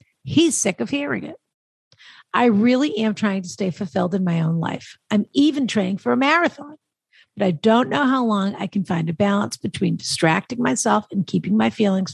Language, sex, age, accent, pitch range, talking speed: English, female, 50-69, American, 180-245 Hz, 200 wpm